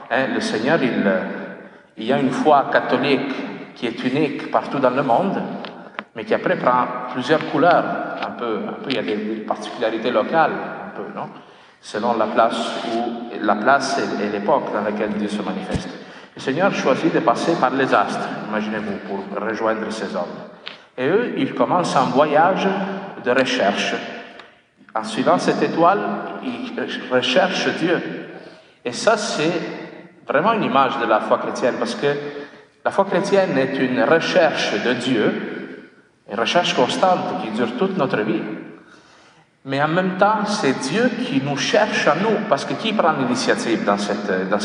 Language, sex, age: French, male, 50-69